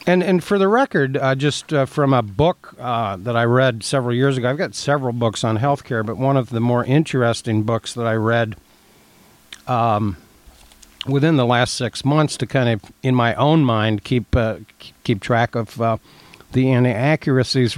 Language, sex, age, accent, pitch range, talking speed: English, male, 60-79, American, 115-140 Hz, 190 wpm